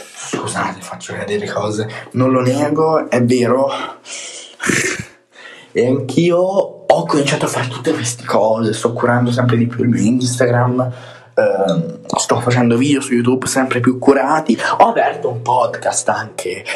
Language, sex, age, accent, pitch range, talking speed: Italian, male, 20-39, native, 115-135 Hz, 140 wpm